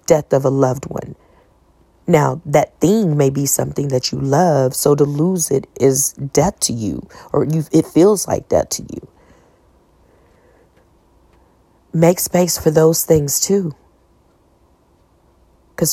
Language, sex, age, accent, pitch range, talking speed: English, female, 40-59, American, 115-175 Hz, 135 wpm